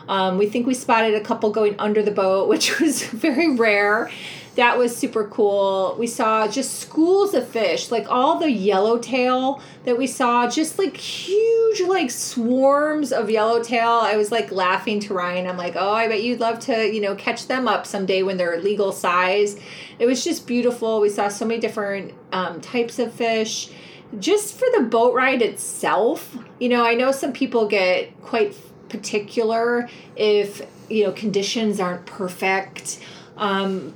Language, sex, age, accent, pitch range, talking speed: English, female, 30-49, American, 205-255 Hz, 175 wpm